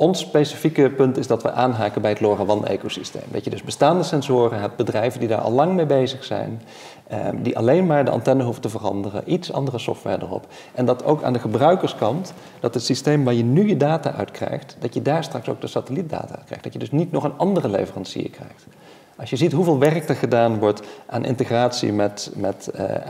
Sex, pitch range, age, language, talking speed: male, 110-145 Hz, 40-59, Dutch, 215 wpm